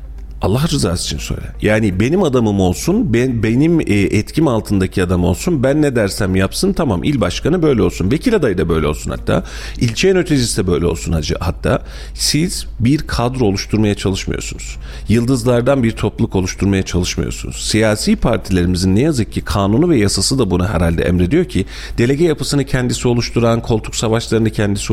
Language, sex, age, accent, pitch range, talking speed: Turkish, male, 40-59, native, 90-125 Hz, 165 wpm